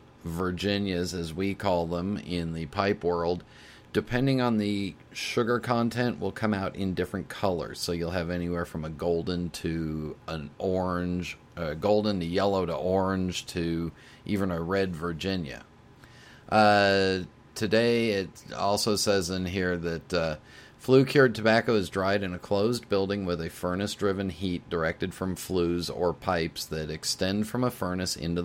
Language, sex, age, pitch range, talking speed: English, male, 40-59, 85-105 Hz, 155 wpm